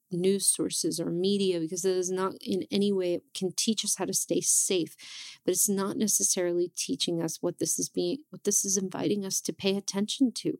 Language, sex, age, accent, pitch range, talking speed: English, female, 30-49, American, 165-200 Hz, 215 wpm